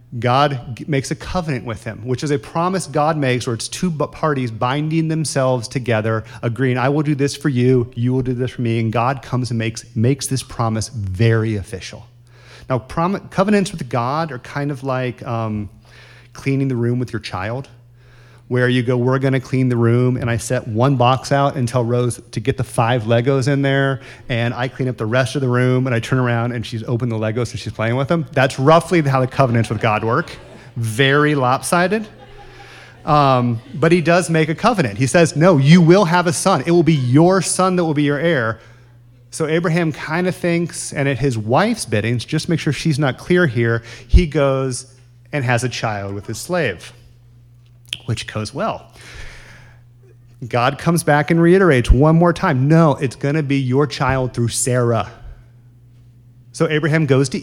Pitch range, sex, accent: 120-145 Hz, male, American